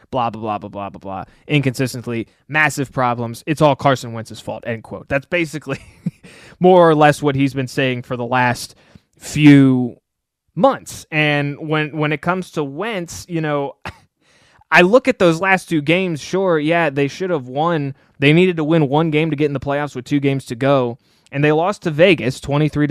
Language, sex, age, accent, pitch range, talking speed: English, male, 20-39, American, 125-160 Hz, 195 wpm